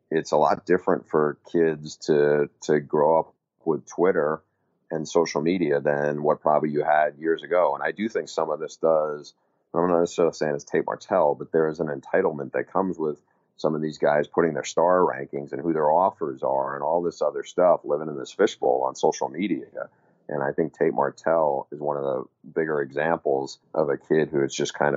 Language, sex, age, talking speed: English, male, 30-49, 210 wpm